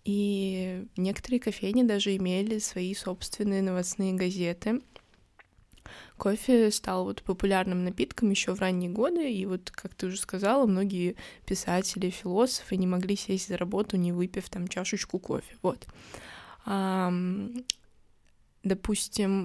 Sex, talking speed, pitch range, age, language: female, 125 wpm, 185-215 Hz, 20-39, Russian